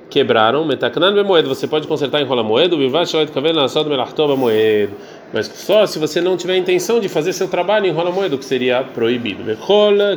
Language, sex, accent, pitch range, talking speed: Portuguese, male, Brazilian, 130-175 Hz, 220 wpm